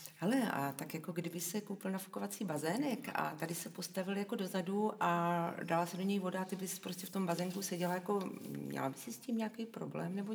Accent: native